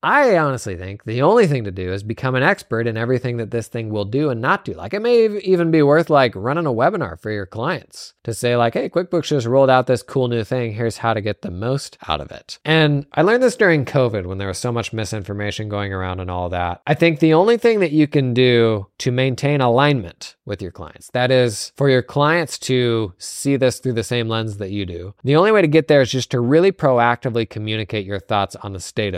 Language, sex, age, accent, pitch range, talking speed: English, male, 20-39, American, 105-150 Hz, 245 wpm